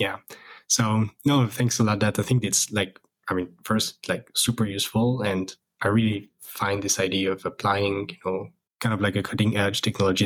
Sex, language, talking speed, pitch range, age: male, English, 200 wpm, 100-110 Hz, 20-39